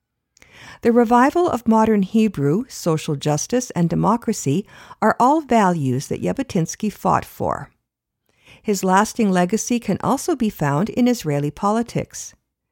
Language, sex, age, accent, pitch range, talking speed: English, female, 50-69, American, 170-230 Hz, 125 wpm